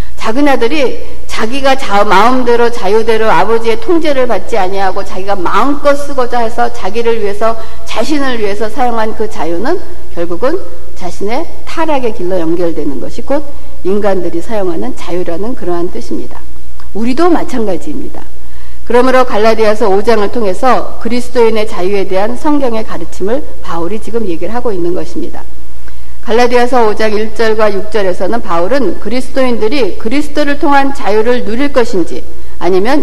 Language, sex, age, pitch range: Korean, female, 60-79, 180-250 Hz